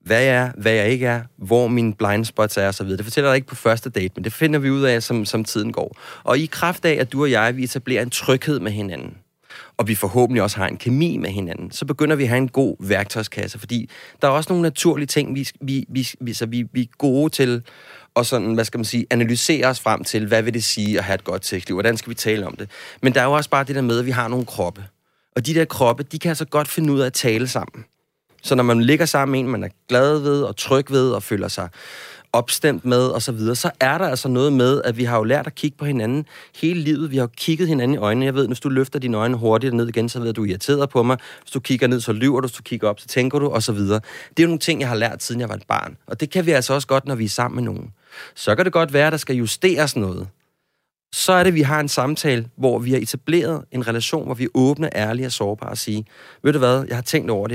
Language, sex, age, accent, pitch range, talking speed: Danish, male, 30-49, native, 115-145 Hz, 285 wpm